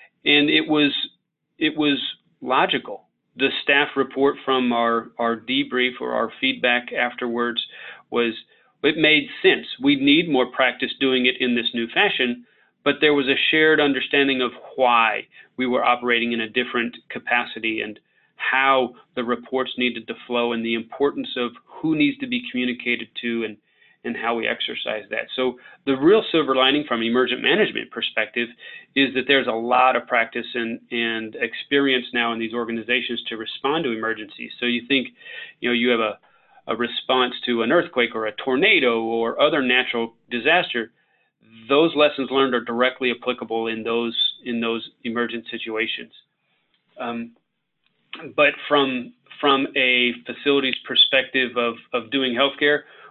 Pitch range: 120-140 Hz